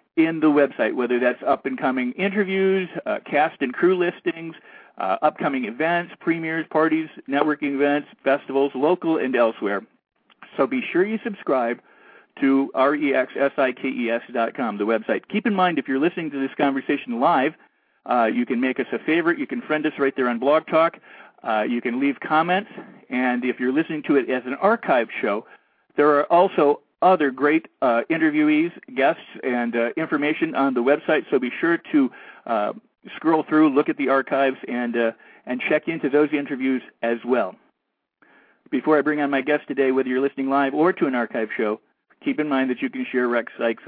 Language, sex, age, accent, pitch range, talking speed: English, male, 50-69, American, 130-165 Hz, 180 wpm